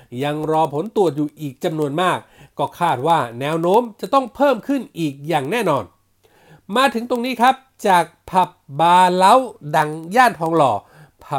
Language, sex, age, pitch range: Thai, male, 60-79, 155-230 Hz